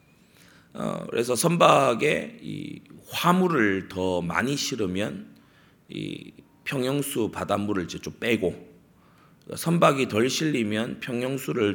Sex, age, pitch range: male, 30-49, 95-140 Hz